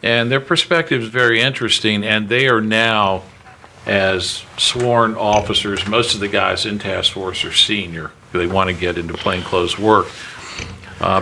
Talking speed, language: 160 wpm, English